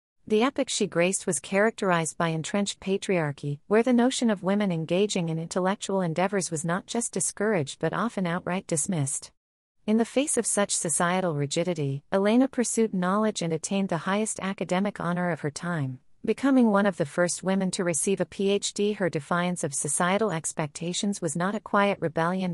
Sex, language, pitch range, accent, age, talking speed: female, English, 165-205 Hz, American, 40-59, 175 wpm